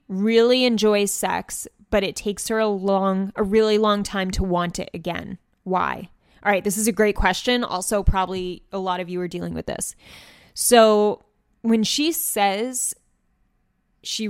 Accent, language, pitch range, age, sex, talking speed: American, English, 190-230 Hz, 10-29, female, 170 wpm